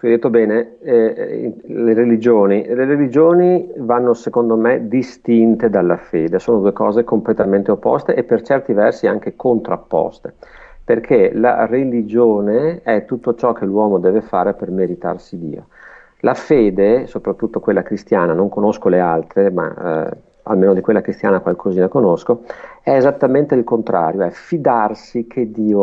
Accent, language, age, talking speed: native, Italian, 50-69, 145 wpm